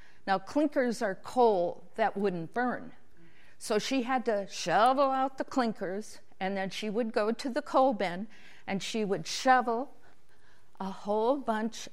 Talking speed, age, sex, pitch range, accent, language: 155 wpm, 50-69, female, 190-235 Hz, American, English